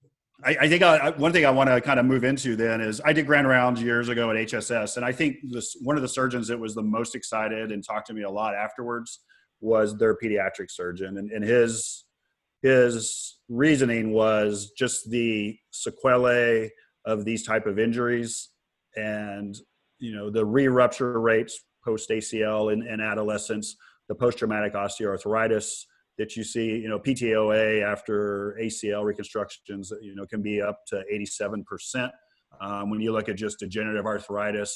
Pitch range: 105-120 Hz